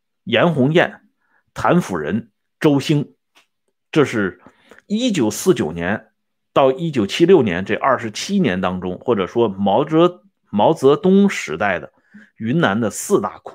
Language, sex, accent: Swedish, male, Chinese